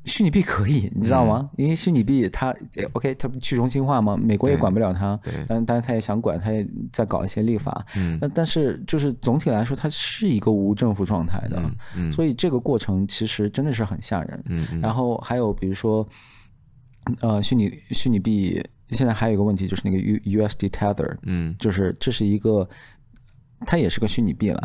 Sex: male